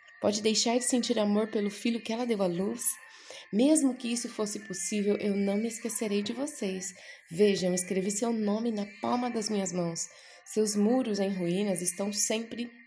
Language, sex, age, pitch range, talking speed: Portuguese, female, 20-39, 190-240 Hz, 175 wpm